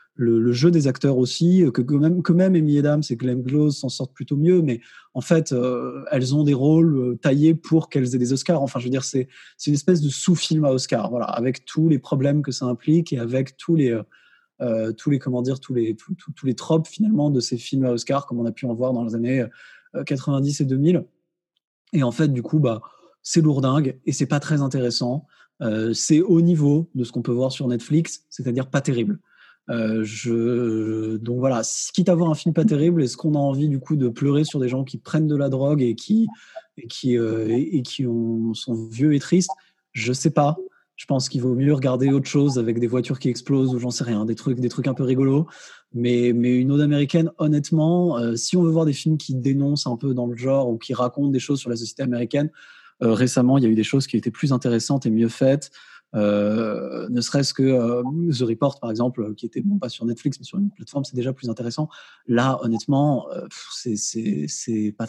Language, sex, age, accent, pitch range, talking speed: French, male, 20-39, French, 120-150 Hz, 240 wpm